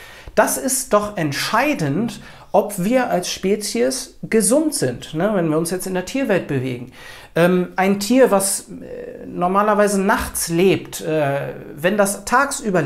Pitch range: 165-220 Hz